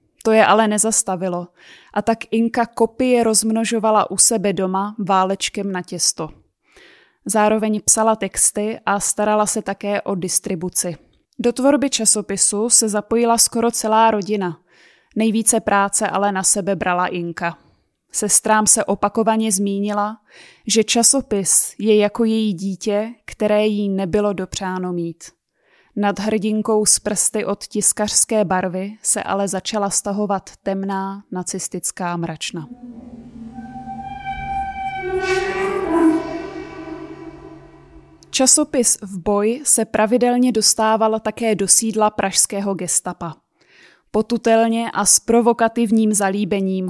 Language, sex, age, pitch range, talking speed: Czech, female, 20-39, 195-230 Hz, 105 wpm